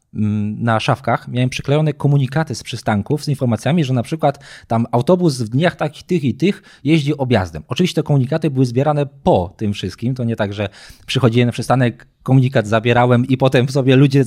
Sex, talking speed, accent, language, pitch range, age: male, 185 wpm, native, Polish, 115-150 Hz, 20-39